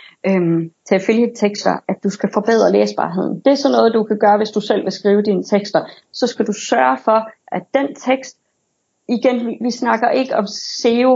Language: Danish